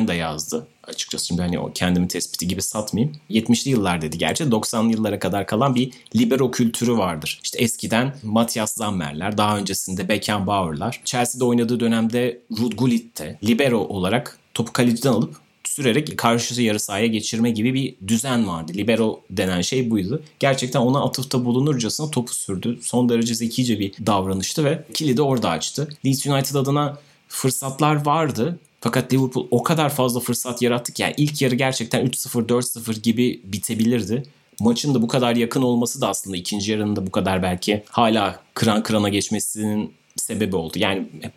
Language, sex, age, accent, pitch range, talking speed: Turkish, male, 30-49, native, 100-125 Hz, 160 wpm